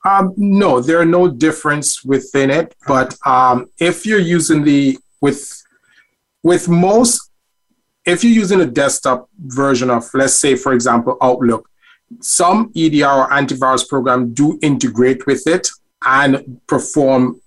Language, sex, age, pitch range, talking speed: English, male, 30-49, 125-155 Hz, 135 wpm